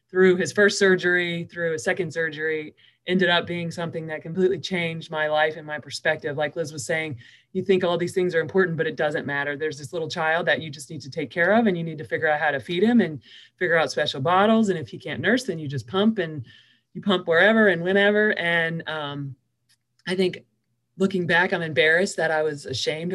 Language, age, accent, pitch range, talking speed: English, 20-39, American, 150-185 Hz, 230 wpm